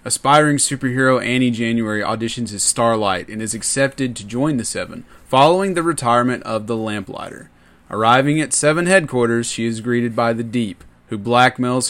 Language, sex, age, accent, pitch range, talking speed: English, male, 30-49, American, 105-130 Hz, 160 wpm